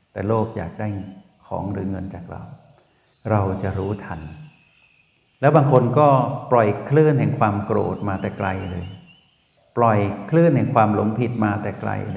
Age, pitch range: 60-79, 100-125 Hz